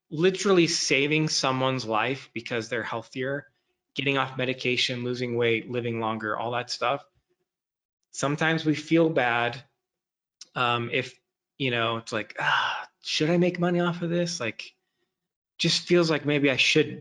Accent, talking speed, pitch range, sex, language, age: American, 150 wpm, 115-155 Hz, male, English, 20-39